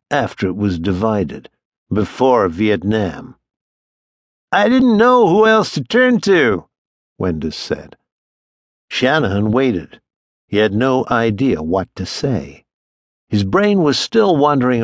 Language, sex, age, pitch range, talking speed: English, male, 60-79, 105-150 Hz, 120 wpm